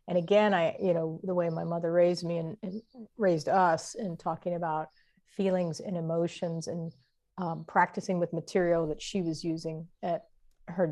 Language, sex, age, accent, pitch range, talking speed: English, female, 40-59, American, 170-200 Hz, 175 wpm